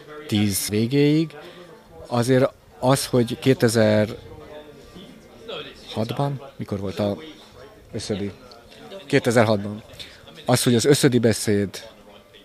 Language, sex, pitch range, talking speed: Hungarian, male, 105-125 Hz, 80 wpm